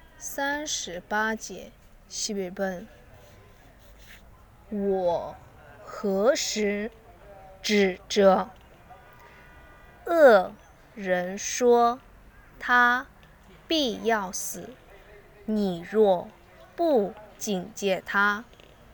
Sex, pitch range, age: female, 180-230 Hz, 20-39